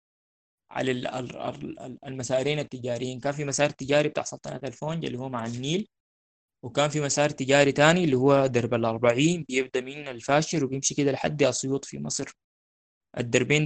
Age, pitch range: 20-39, 120-145 Hz